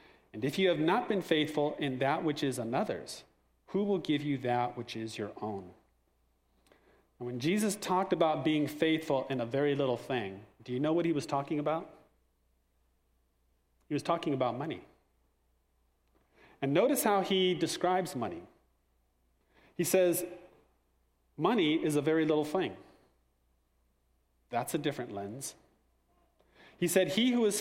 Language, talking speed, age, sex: English, 150 wpm, 40-59, male